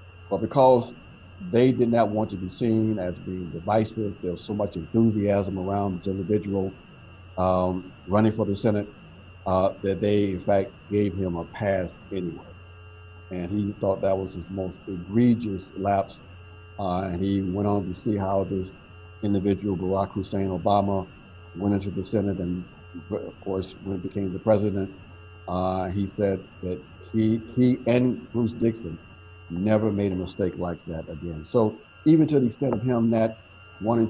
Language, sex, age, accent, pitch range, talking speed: English, male, 50-69, American, 95-110 Hz, 165 wpm